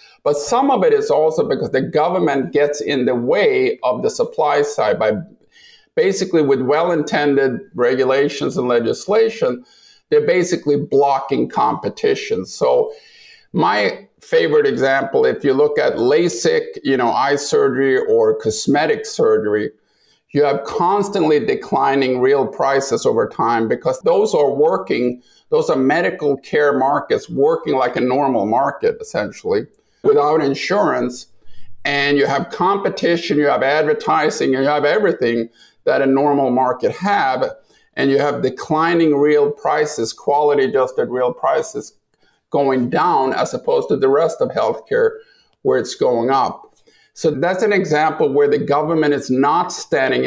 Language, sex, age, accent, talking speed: English, male, 50-69, American, 140 wpm